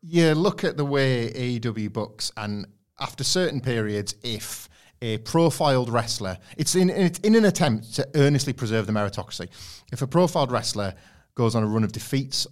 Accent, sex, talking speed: British, male, 160 wpm